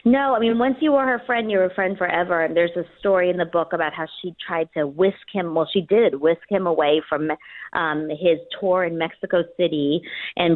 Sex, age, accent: female, 40-59, American